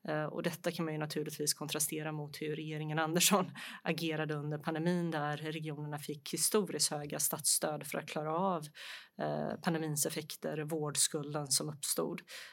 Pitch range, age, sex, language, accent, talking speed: 155-170 Hz, 30-49, female, Swedish, native, 140 wpm